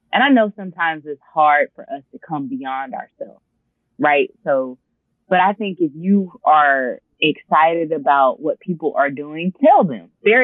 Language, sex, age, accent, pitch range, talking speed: English, female, 20-39, American, 150-215 Hz, 165 wpm